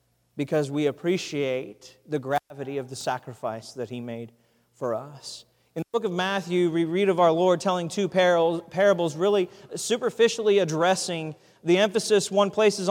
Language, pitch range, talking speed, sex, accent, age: English, 185-230 Hz, 155 wpm, male, American, 40-59